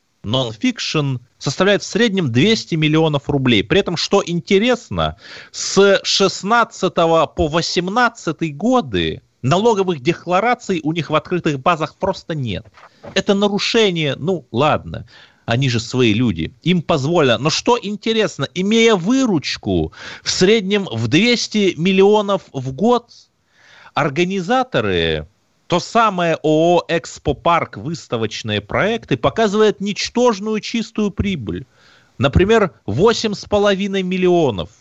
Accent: native